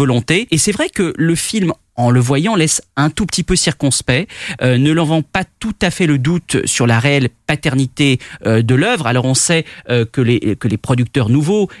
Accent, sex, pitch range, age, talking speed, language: French, male, 125-160 Hz, 30-49, 210 wpm, French